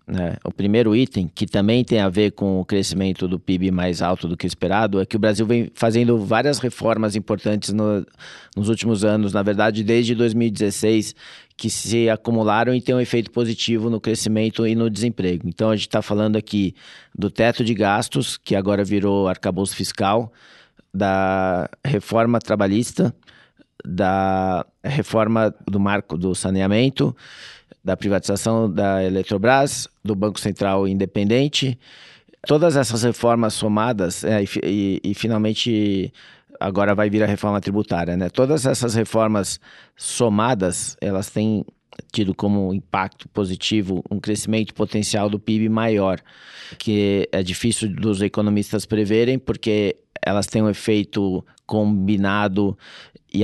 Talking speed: 140 wpm